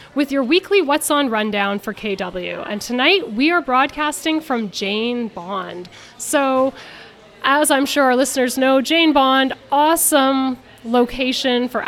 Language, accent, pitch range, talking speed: English, American, 225-280 Hz, 140 wpm